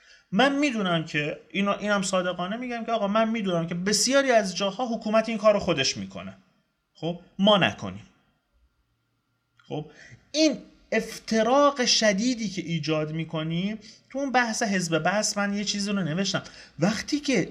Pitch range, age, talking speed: 165-230 Hz, 30-49, 145 wpm